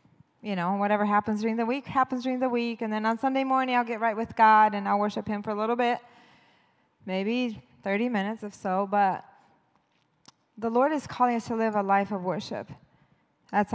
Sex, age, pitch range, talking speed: female, 20-39, 215-255 Hz, 205 wpm